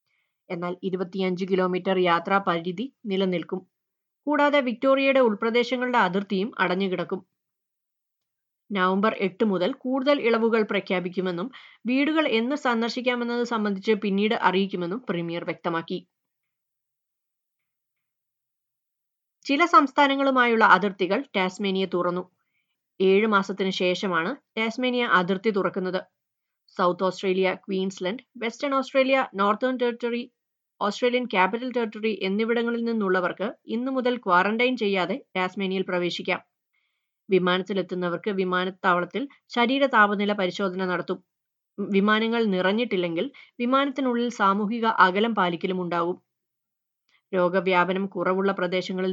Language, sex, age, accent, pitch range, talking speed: Malayalam, female, 30-49, native, 185-240 Hz, 85 wpm